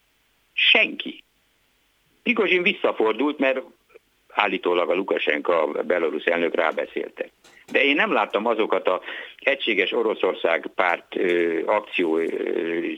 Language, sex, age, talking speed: Hungarian, male, 60-79, 115 wpm